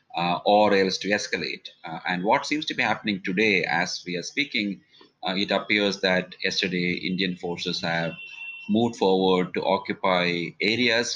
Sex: male